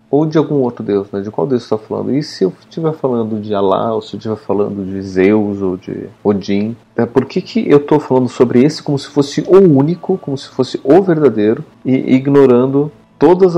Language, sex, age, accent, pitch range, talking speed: Portuguese, male, 40-59, Brazilian, 105-145 Hz, 220 wpm